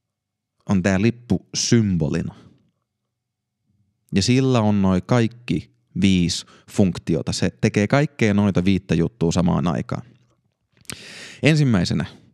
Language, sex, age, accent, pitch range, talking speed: Finnish, male, 30-49, native, 95-120 Hz, 90 wpm